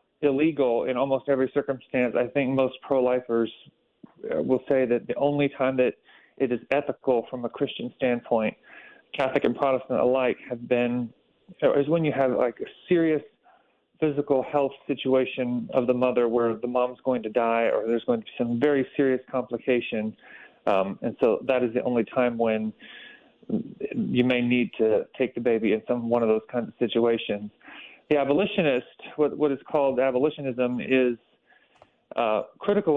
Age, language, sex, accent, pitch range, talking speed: 40-59, English, male, American, 120-140 Hz, 165 wpm